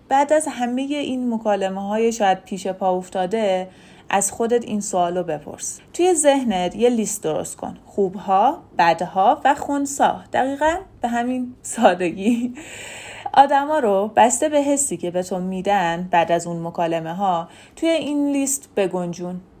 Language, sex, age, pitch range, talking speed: Persian, female, 30-49, 180-255 Hz, 145 wpm